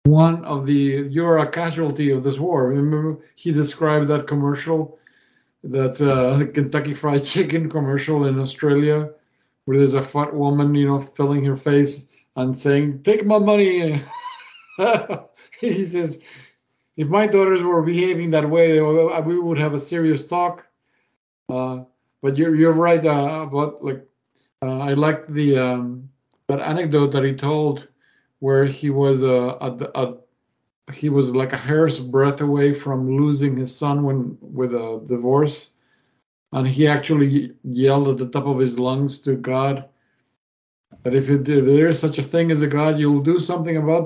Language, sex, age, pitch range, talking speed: English, male, 50-69, 135-155 Hz, 165 wpm